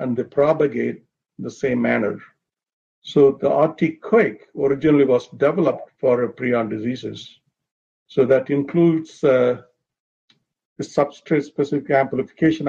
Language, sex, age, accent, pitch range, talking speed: English, male, 50-69, Indian, 125-145 Hz, 115 wpm